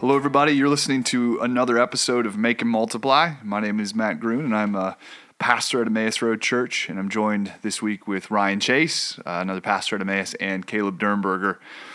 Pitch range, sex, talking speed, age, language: 95-120 Hz, male, 200 wpm, 30-49, English